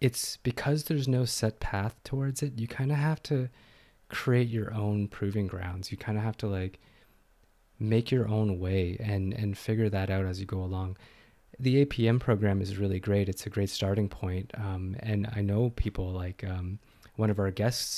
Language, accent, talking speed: English, American, 195 wpm